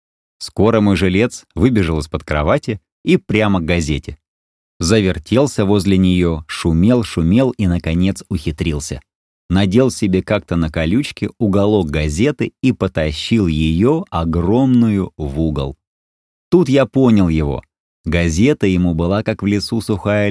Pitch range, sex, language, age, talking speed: 75-105 Hz, male, Russian, 30-49, 125 wpm